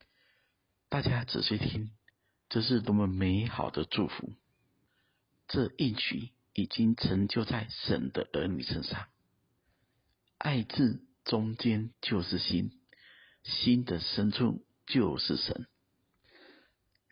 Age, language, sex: 50-69, Chinese, male